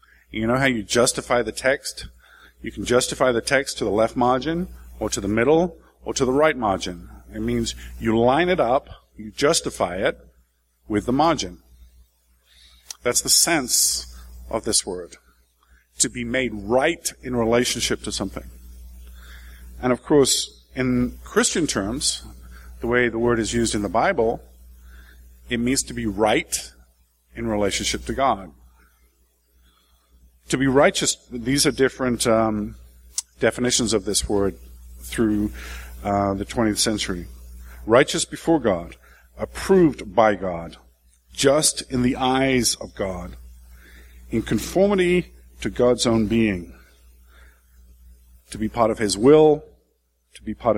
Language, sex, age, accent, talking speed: English, male, 50-69, American, 140 wpm